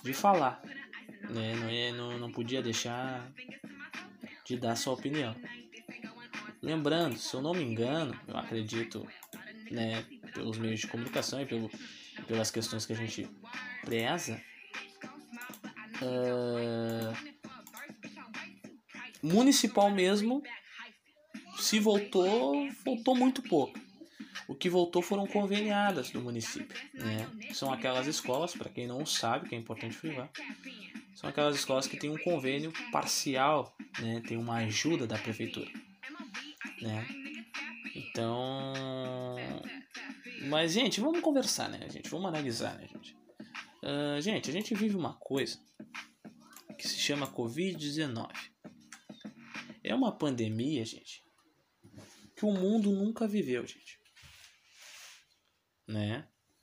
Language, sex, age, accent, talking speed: Portuguese, male, 20-39, Brazilian, 115 wpm